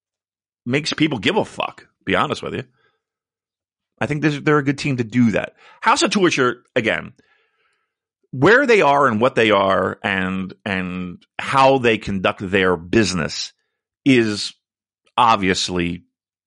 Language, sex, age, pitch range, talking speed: English, male, 40-59, 95-155 Hz, 140 wpm